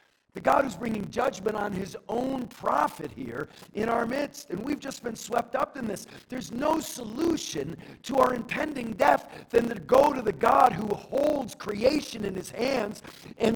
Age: 50-69